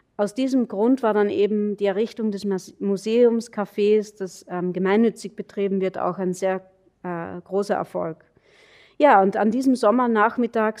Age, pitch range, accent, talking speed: 30-49, 190-215 Hz, German, 145 wpm